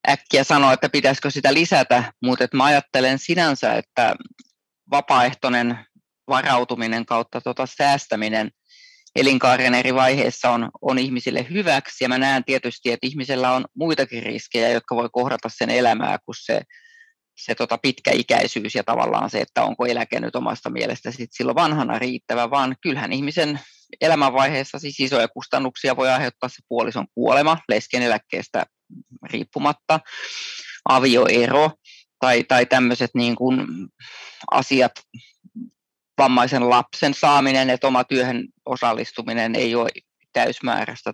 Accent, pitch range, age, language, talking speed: native, 125-145 Hz, 20-39, Finnish, 120 wpm